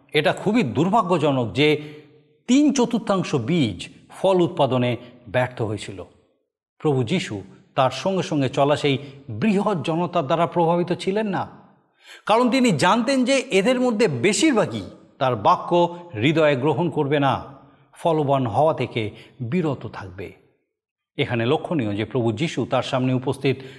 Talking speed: 125 wpm